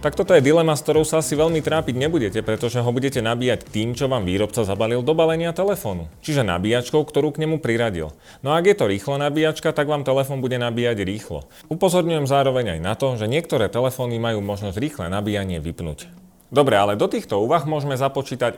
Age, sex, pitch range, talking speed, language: 30-49, male, 100-140 Hz, 200 wpm, Slovak